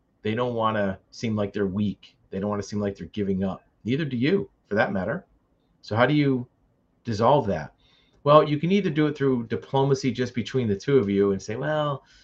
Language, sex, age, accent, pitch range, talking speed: English, male, 30-49, American, 100-135 Hz, 225 wpm